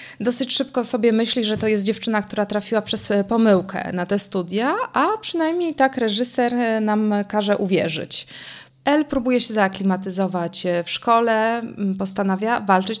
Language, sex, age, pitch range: Polish, female, 20-39, 190-225 Hz